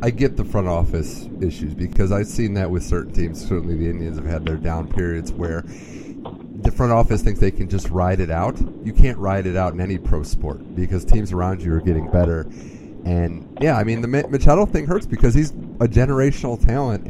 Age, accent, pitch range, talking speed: 30-49, American, 85-110 Hz, 215 wpm